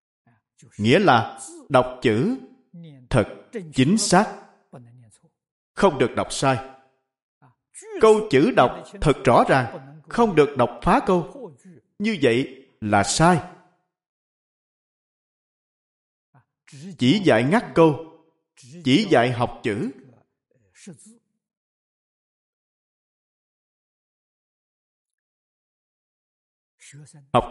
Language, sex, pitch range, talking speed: Vietnamese, male, 130-200 Hz, 75 wpm